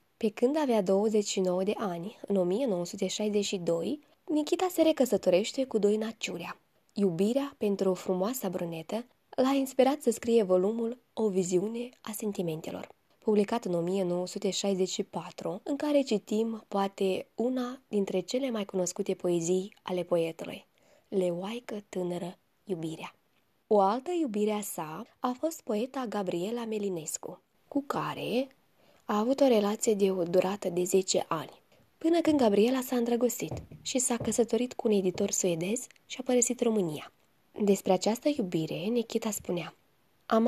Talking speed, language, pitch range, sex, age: 135 wpm, Romanian, 185-240 Hz, female, 20-39